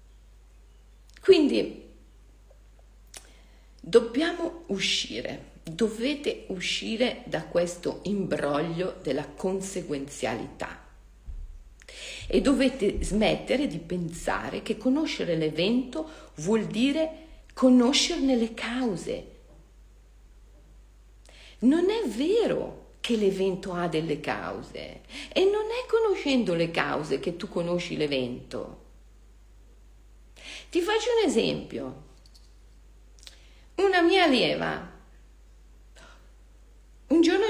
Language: Italian